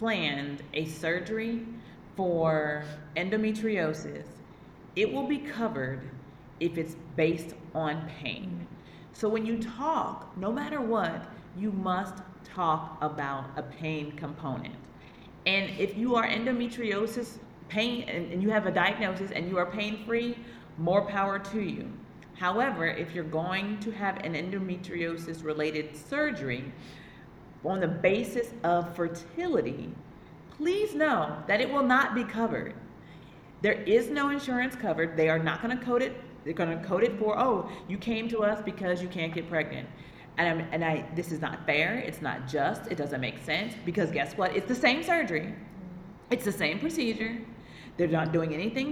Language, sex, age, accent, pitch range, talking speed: English, female, 40-59, American, 160-225 Hz, 155 wpm